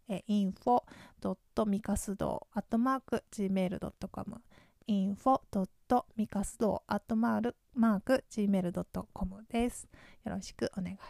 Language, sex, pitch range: Japanese, female, 195-240 Hz